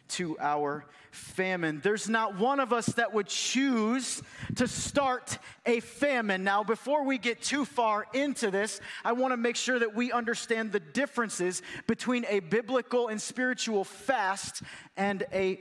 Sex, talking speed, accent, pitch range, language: male, 160 wpm, American, 225-275 Hz, English